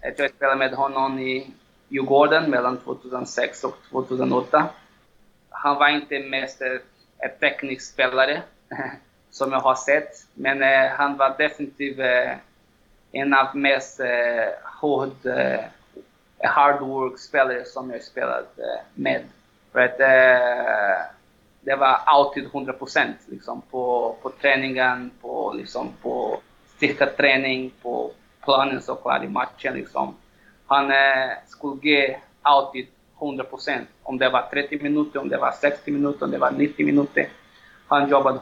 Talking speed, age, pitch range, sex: 125 wpm, 20-39, 130-140 Hz, male